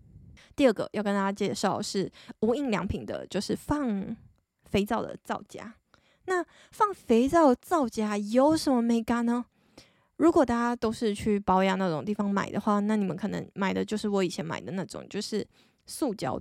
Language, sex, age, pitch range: Chinese, female, 20-39, 210-255 Hz